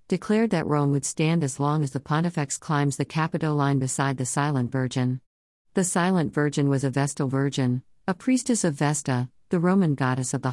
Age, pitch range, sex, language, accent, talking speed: 50-69, 130-155 Hz, female, English, American, 190 wpm